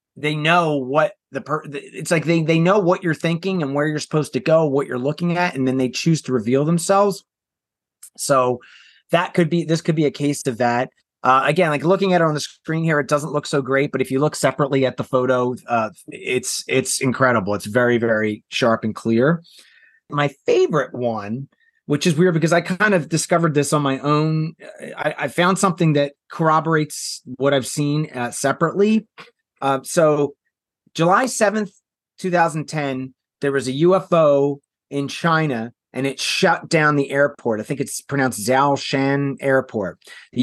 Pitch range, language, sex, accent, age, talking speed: 135-170 Hz, English, male, American, 30-49, 185 wpm